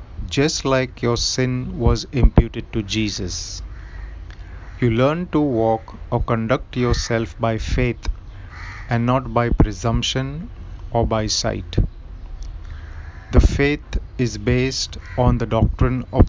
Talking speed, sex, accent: 120 wpm, male, native